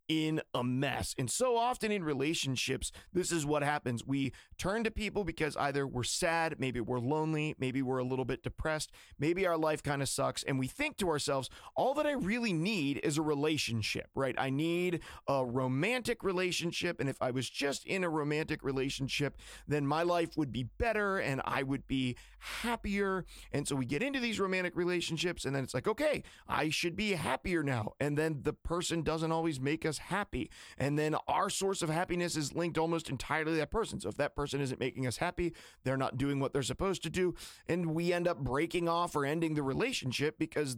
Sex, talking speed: male, 205 wpm